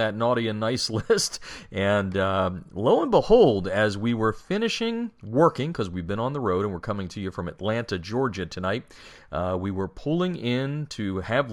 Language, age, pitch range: English, 40-59, 95-125 Hz